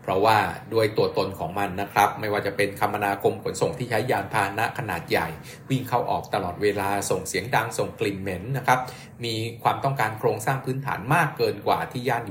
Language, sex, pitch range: Thai, male, 105-140 Hz